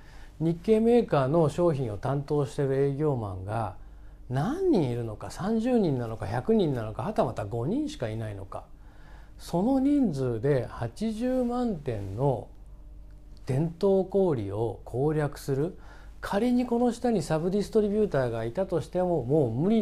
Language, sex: Japanese, male